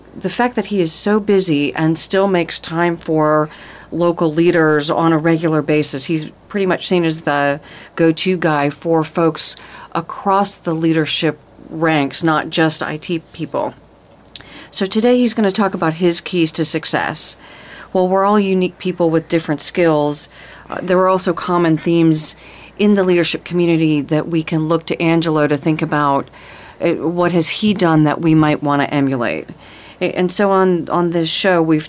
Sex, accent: female, American